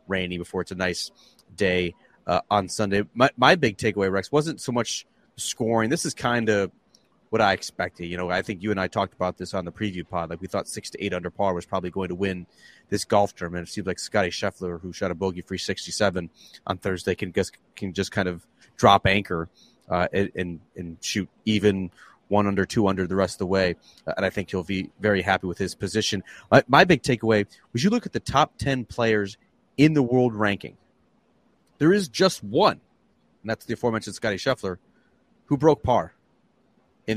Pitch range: 95-120 Hz